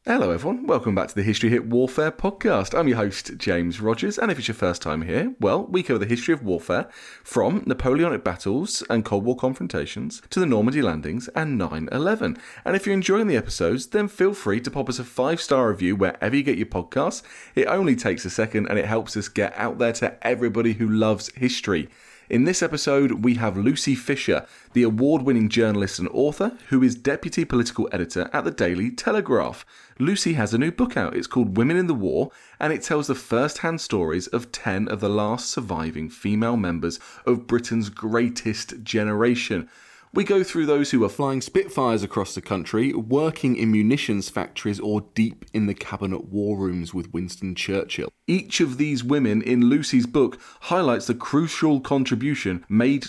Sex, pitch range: male, 105-145 Hz